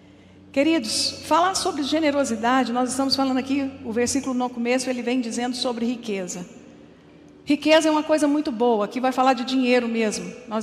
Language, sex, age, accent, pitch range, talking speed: Portuguese, female, 50-69, Brazilian, 240-275 Hz, 170 wpm